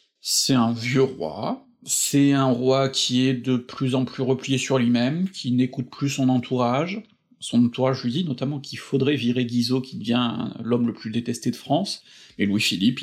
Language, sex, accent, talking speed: French, male, French, 185 wpm